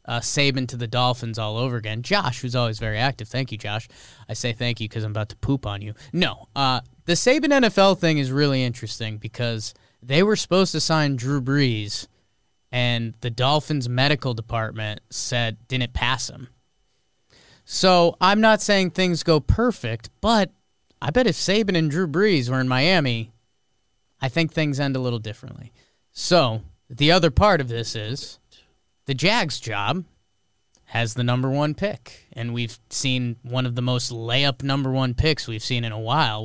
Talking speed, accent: 180 wpm, American